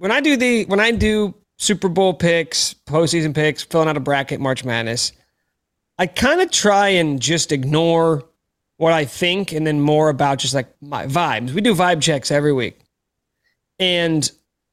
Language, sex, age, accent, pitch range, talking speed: English, male, 30-49, American, 135-170 Hz, 175 wpm